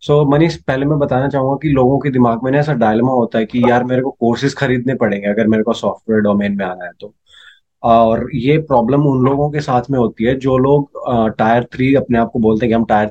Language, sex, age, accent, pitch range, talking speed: Hindi, male, 20-39, native, 115-145 Hz, 250 wpm